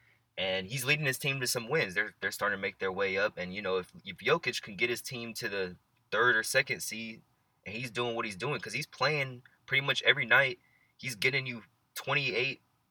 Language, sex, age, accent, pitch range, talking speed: English, male, 20-39, American, 95-125 Hz, 230 wpm